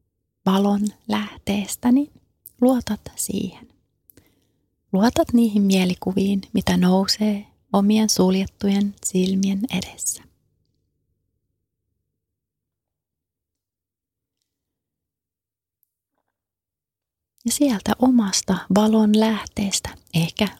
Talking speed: 60 wpm